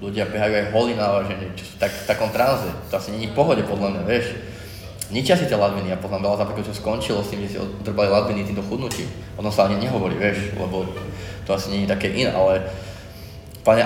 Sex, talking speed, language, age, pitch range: male, 225 wpm, Czech, 20-39, 100-110 Hz